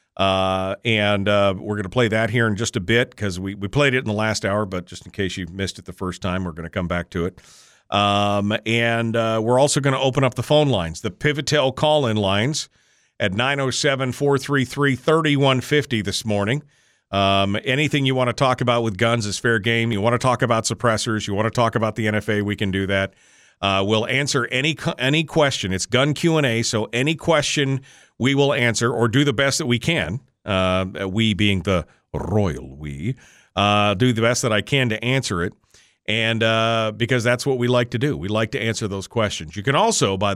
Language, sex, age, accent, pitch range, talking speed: English, male, 40-59, American, 100-130 Hz, 220 wpm